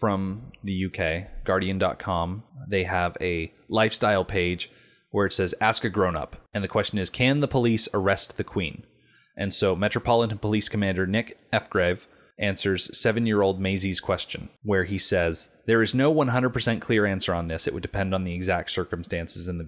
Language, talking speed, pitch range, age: English, 170 wpm, 95-120 Hz, 30-49